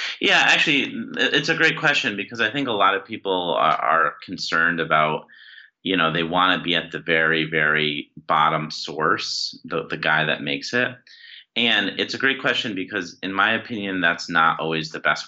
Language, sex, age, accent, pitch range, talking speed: English, male, 30-49, American, 80-100 Hz, 195 wpm